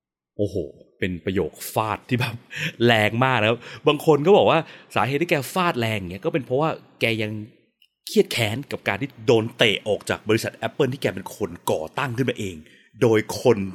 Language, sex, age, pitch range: Thai, male, 30-49, 105-140 Hz